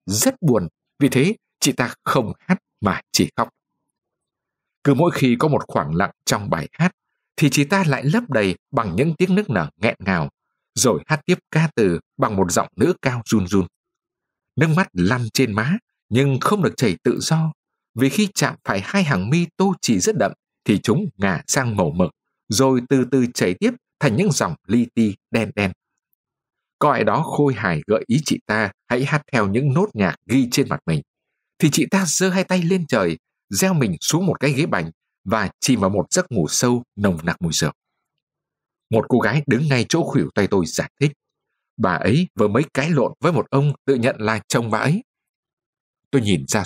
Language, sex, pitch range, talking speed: Vietnamese, male, 115-160 Hz, 205 wpm